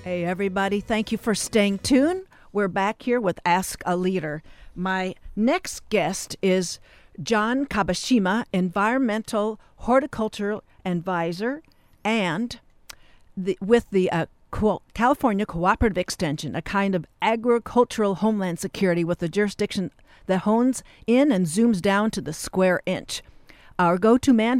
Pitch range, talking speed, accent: 175-230 Hz, 125 wpm, American